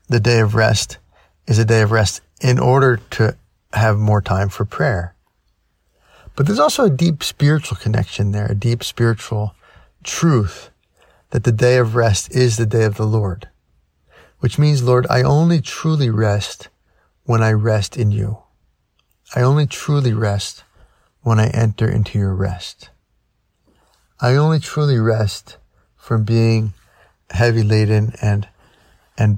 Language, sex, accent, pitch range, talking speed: English, male, American, 100-125 Hz, 145 wpm